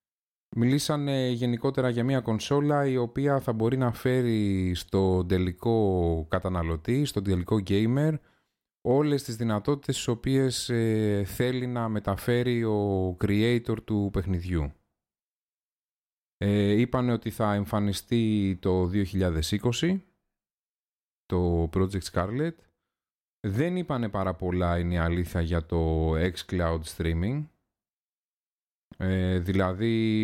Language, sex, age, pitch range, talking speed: Greek, male, 30-49, 90-120 Hz, 105 wpm